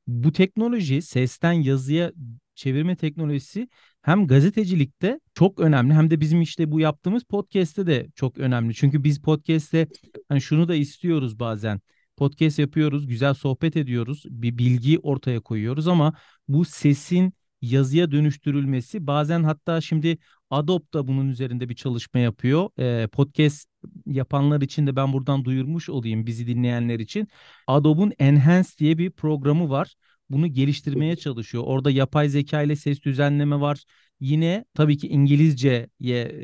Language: Turkish